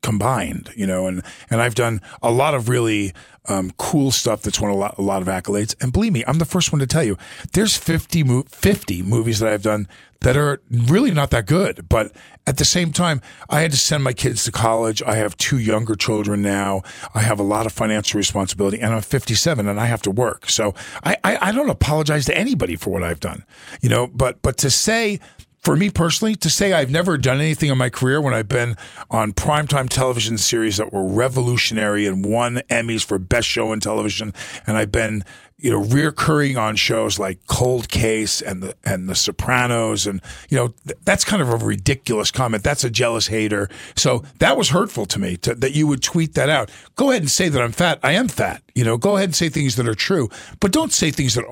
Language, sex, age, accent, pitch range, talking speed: English, male, 50-69, American, 105-150 Hz, 225 wpm